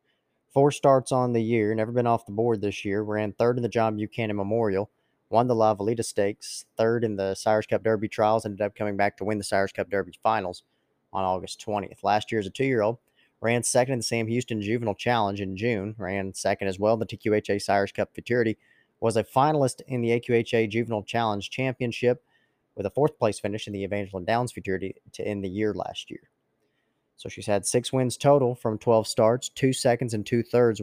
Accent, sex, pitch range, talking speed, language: American, male, 100-120 Hz, 210 wpm, English